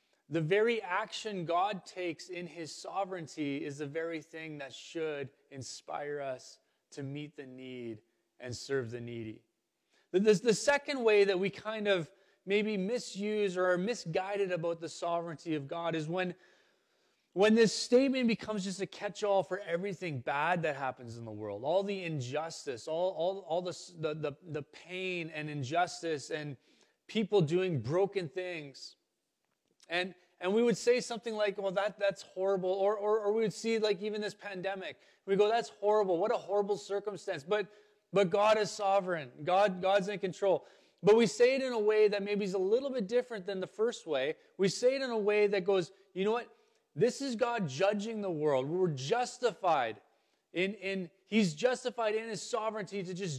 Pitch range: 165-210 Hz